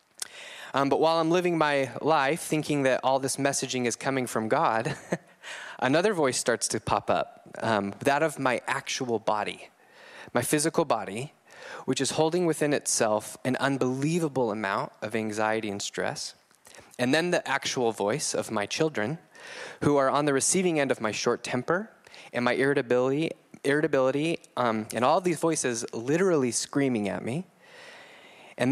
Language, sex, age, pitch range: English, male, 20-39, 125-160 Hz